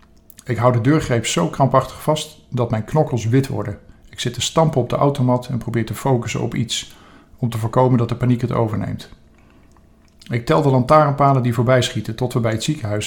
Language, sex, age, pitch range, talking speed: Dutch, male, 50-69, 110-130 Hz, 205 wpm